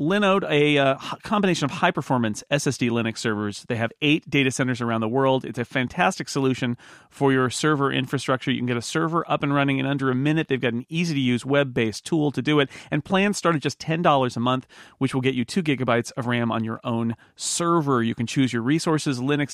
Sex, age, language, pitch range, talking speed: male, 40-59, English, 120-145 Hz, 220 wpm